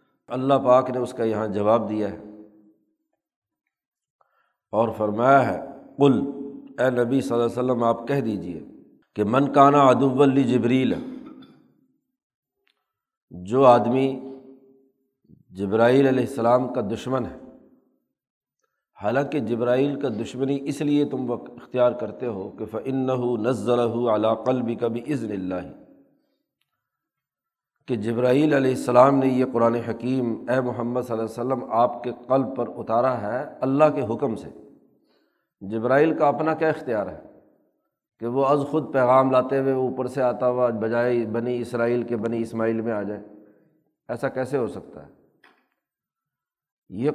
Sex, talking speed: male, 135 wpm